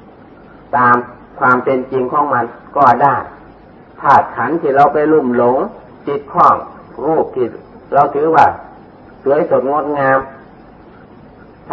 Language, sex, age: Thai, male, 40-59